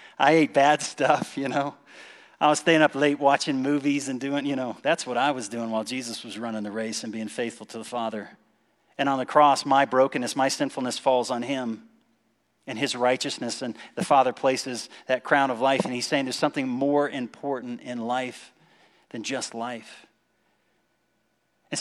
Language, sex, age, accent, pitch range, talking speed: English, male, 40-59, American, 130-155 Hz, 190 wpm